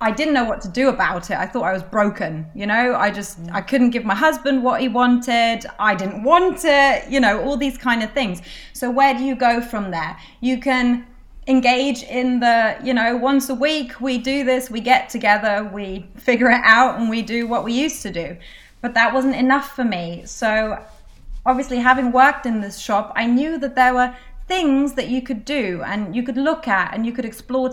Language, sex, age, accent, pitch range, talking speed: English, female, 30-49, British, 225-270 Hz, 225 wpm